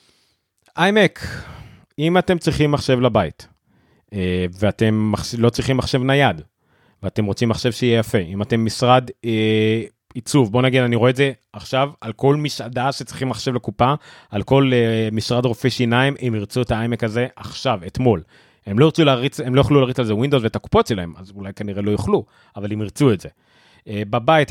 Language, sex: Hebrew, male